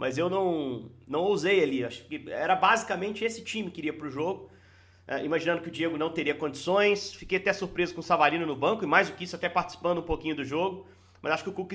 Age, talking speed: 40-59, 250 wpm